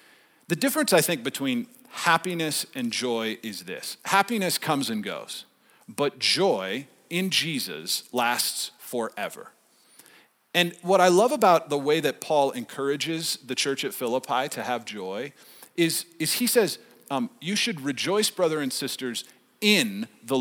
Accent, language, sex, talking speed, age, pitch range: American, English, male, 145 wpm, 40-59, 135-210 Hz